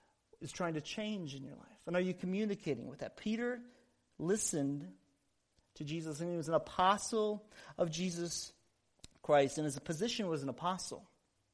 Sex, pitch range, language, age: male, 155-200 Hz, English, 40-59